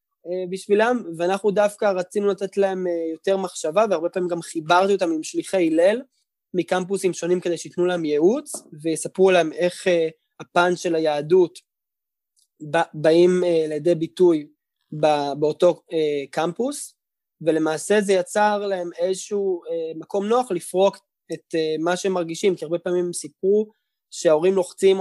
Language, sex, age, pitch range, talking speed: Hebrew, male, 20-39, 165-195 Hz, 125 wpm